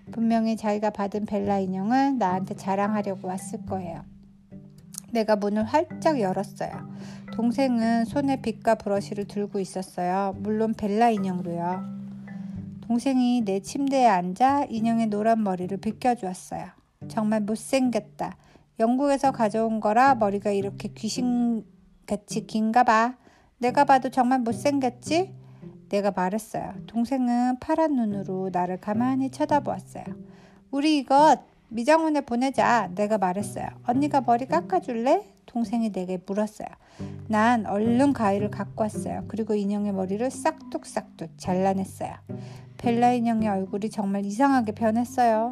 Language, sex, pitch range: Korean, female, 195-255 Hz